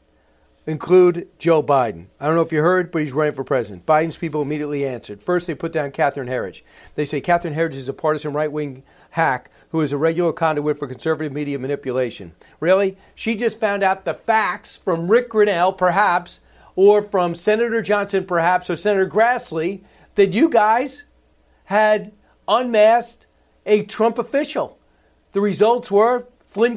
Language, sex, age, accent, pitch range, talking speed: English, male, 40-59, American, 160-205 Hz, 165 wpm